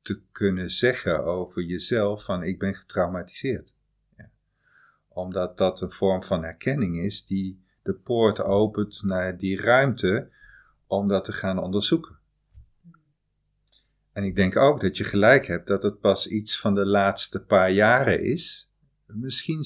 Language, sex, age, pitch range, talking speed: Dutch, male, 50-69, 95-120 Hz, 145 wpm